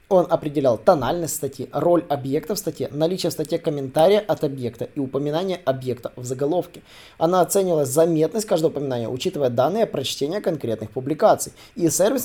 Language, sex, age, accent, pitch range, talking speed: Russian, male, 20-39, native, 135-185 Hz, 155 wpm